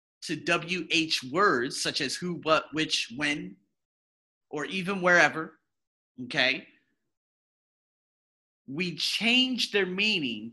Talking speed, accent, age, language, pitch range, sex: 95 wpm, American, 30-49, English, 150-230 Hz, male